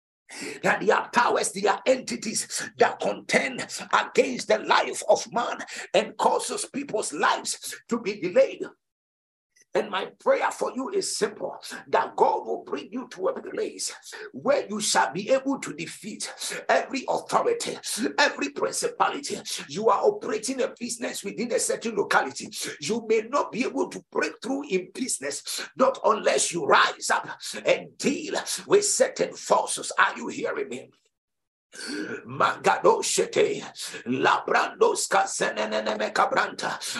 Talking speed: 140 wpm